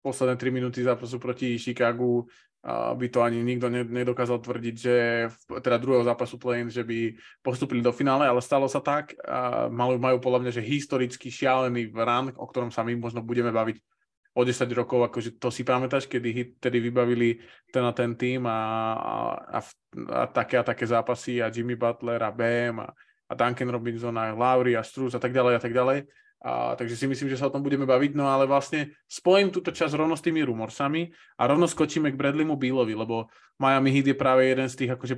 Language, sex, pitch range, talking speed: Slovak, male, 120-135 Hz, 200 wpm